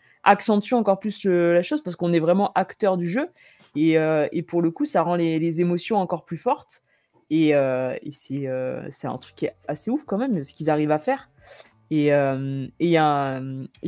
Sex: female